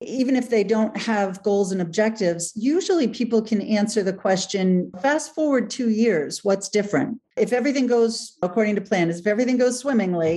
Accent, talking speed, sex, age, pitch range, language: American, 175 wpm, female, 50-69, 180-255 Hz, English